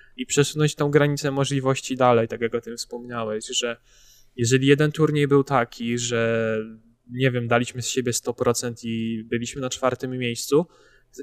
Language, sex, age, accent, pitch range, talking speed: Polish, male, 10-29, native, 120-140 Hz, 160 wpm